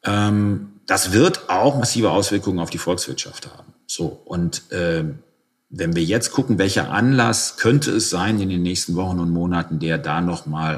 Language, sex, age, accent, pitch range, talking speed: German, male, 40-59, German, 85-115 Hz, 165 wpm